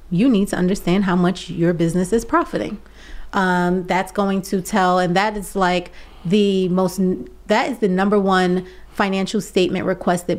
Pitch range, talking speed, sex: 180-255 Hz, 170 wpm, female